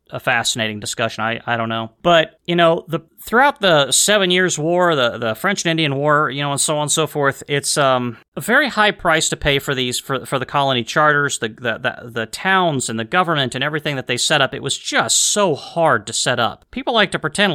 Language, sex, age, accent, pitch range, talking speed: English, male, 30-49, American, 125-165 Hz, 245 wpm